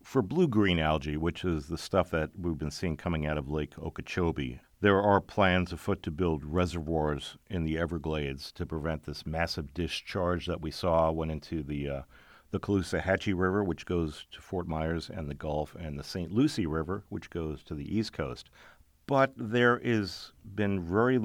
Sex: male